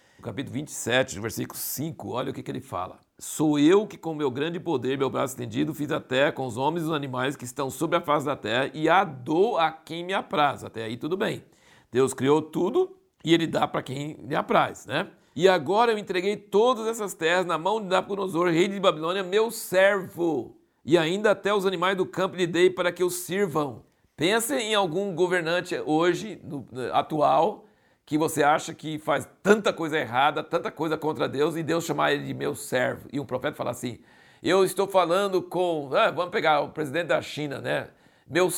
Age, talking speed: 60-79, 200 wpm